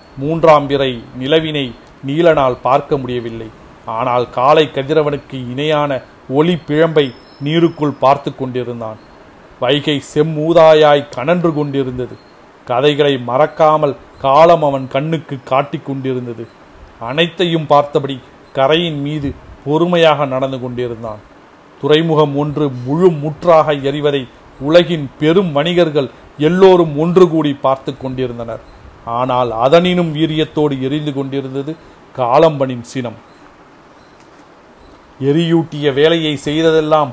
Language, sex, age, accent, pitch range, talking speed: Tamil, male, 40-59, native, 130-160 Hz, 90 wpm